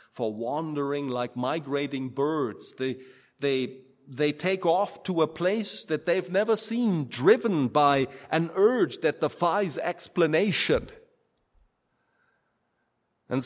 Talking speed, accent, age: 110 wpm, German, 30-49